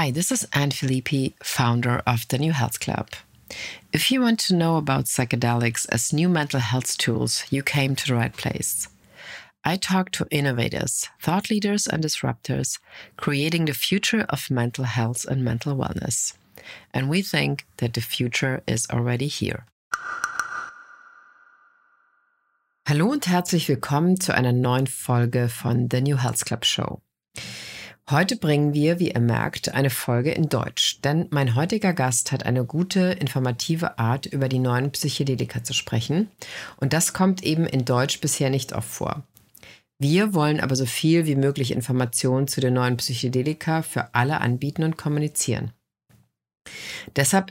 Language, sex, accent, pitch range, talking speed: English, female, German, 125-160 Hz, 155 wpm